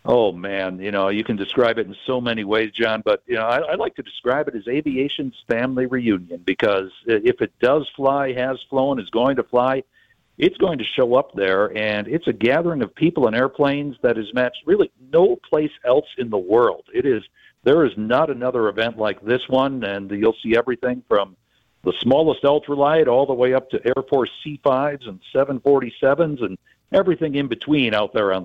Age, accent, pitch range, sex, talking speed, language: 60-79, American, 120-145 Hz, male, 205 wpm, English